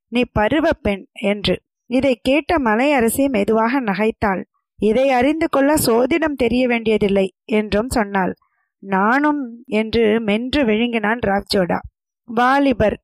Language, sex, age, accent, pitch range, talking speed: Tamil, female, 20-39, native, 220-285 Hz, 110 wpm